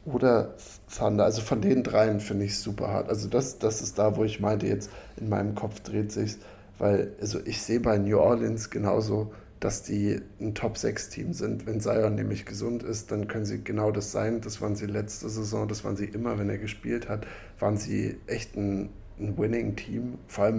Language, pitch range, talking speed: German, 105-115 Hz, 205 wpm